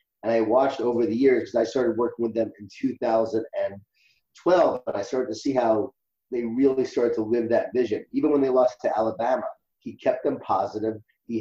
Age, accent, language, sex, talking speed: 30-49, American, English, male, 200 wpm